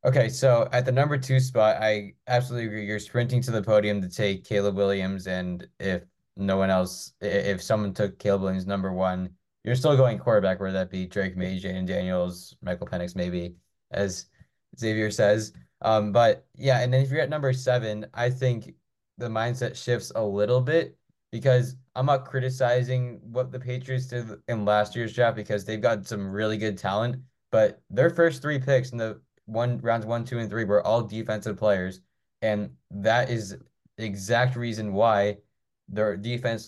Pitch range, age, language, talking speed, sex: 95-120 Hz, 20-39, English, 180 wpm, male